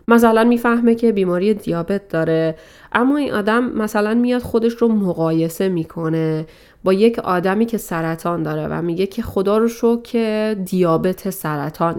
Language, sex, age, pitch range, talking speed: Persian, female, 30-49, 170-200 Hz, 150 wpm